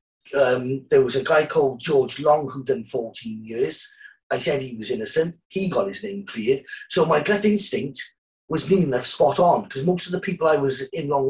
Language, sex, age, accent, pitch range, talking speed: English, male, 30-49, British, 140-210 Hz, 210 wpm